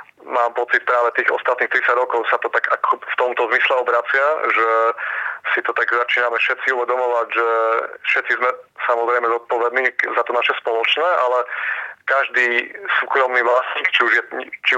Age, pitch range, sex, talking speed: 30-49, 115-125 Hz, male, 145 wpm